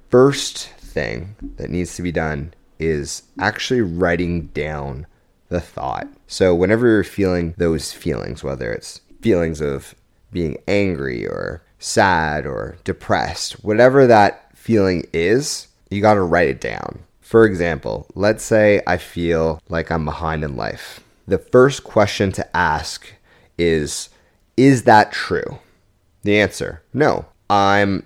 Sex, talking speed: male, 135 wpm